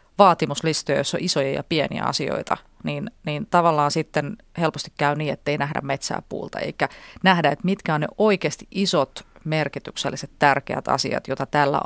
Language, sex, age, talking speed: Finnish, female, 30-49, 160 wpm